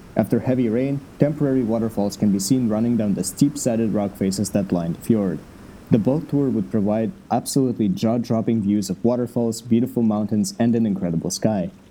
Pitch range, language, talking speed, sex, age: 105-130 Hz, English, 170 wpm, male, 20-39